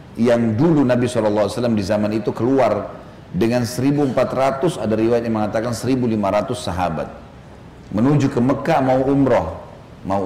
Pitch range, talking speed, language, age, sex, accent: 100-135 Hz, 130 wpm, Indonesian, 40-59, male, native